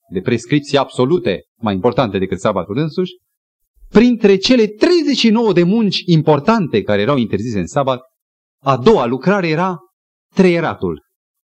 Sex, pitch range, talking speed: male, 125-210 Hz, 125 wpm